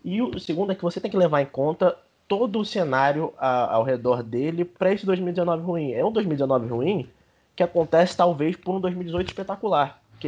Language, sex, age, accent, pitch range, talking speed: Portuguese, male, 20-39, Brazilian, 130-175 Hz, 200 wpm